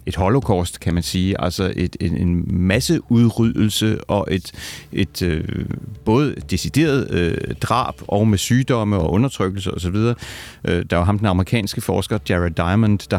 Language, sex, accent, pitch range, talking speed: Danish, male, native, 90-115 Hz, 165 wpm